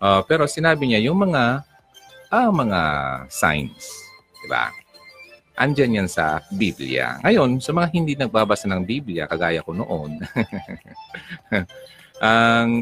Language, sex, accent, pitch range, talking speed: Filipino, male, native, 90-145 Hz, 120 wpm